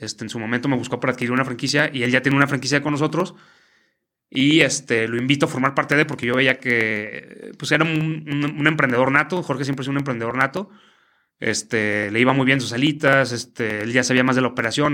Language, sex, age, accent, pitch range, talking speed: English, male, 30-49, Mexican, 125-150 Hz, 210 wpm